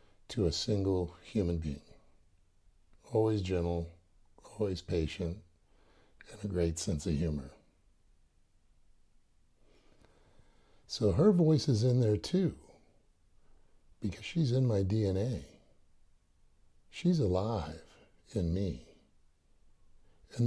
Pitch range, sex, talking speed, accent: 85-115 Hz, male, 95 wpm, American